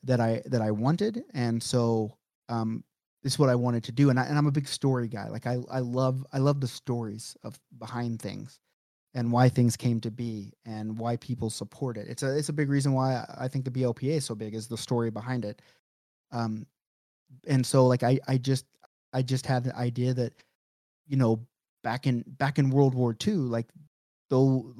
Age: 30-49